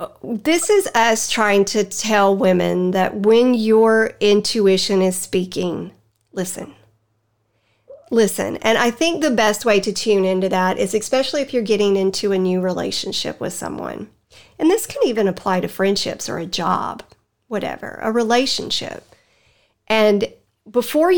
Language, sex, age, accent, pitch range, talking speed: English, female, 40-59, American, 195-235 Hz, 145 wpm